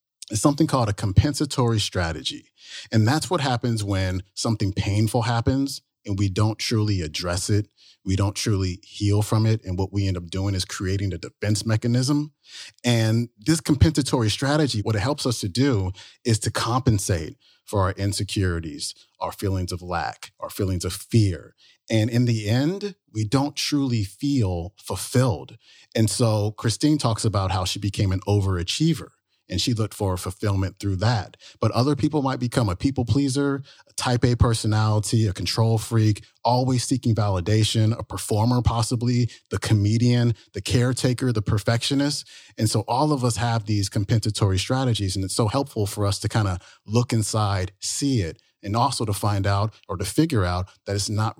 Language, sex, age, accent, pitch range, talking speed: English, male, 40-59, American, 100-125 Hz, 175 wpm